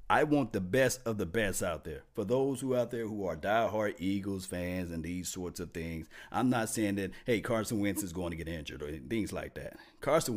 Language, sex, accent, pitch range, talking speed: English, male, American, 105-135 Hz, 245 wpm